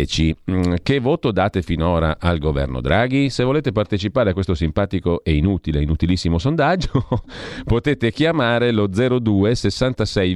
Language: Italian